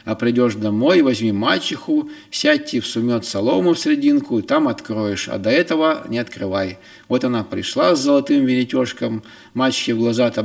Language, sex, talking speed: Russian, male, 160 wpm